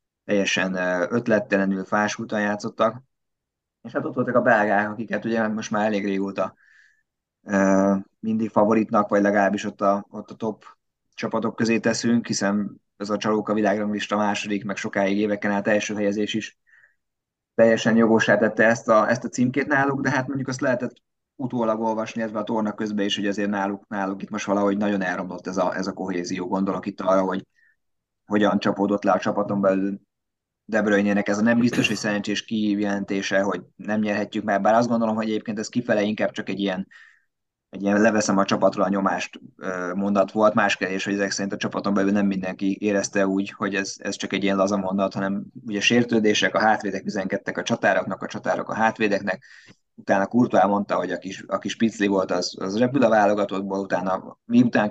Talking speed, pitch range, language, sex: 180 wpm, 100-110 Hz, Hungarian, male